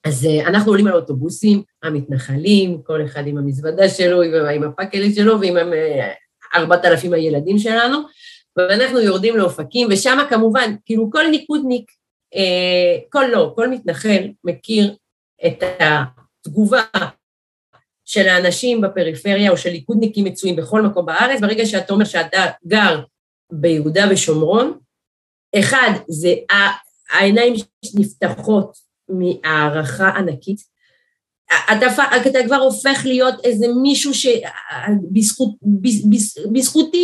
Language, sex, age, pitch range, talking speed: Hebrew, female, 40-59, 180-245 Hz, 105 wpm